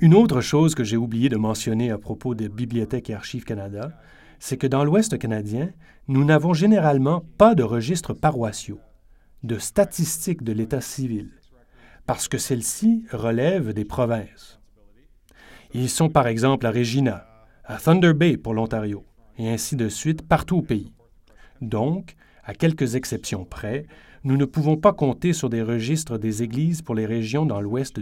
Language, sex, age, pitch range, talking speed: French, male, 30-49, 110-150 Hz, 165 wpm